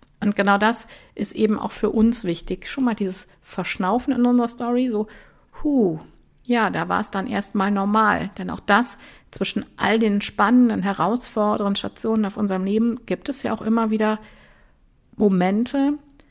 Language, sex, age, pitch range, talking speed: German, female, 50-69, 190-230 Hz, 165 wpm